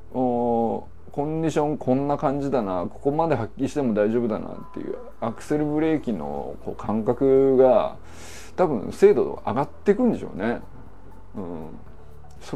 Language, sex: Japanese, male